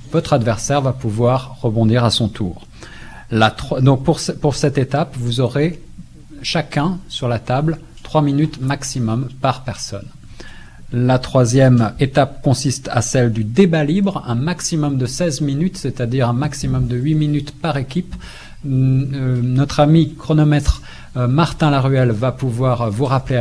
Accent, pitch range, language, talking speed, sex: French, 120-150 Hz, French, 160 wpm, male